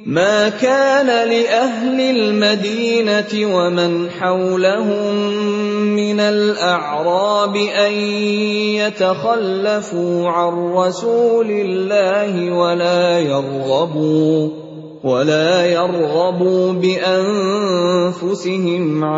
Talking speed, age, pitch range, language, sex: 55 wpm, 30-49, 155-185 Hz, Indonesian, male